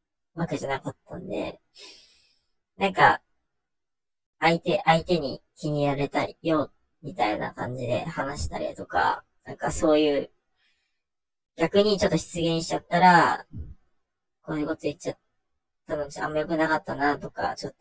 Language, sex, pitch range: Japanese, male, 145-175 Hz